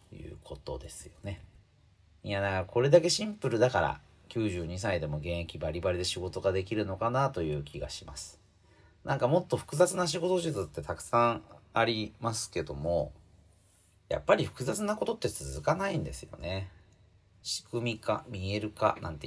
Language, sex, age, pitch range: Japanese, male, 40-59, 85-120 Hz